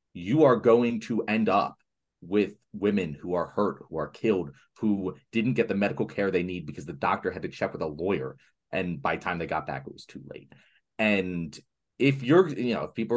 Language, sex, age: English, male, 30-49